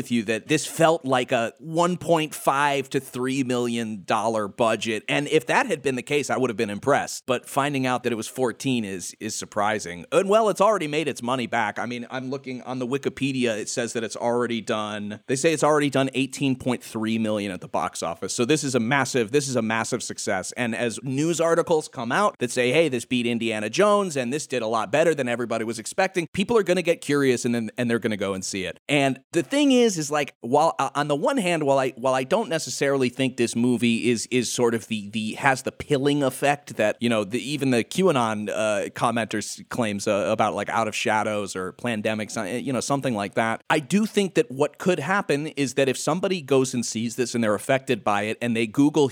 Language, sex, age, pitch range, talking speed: English, male, 30-49, 115-145 Hz, 235 wpm